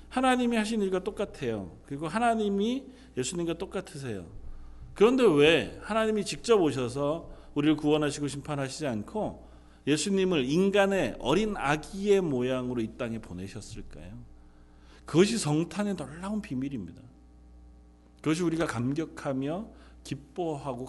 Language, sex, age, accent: Korean, male, 40-59, native